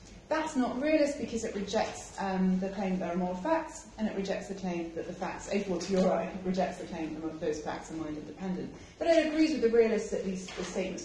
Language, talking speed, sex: English, 245 wpm, female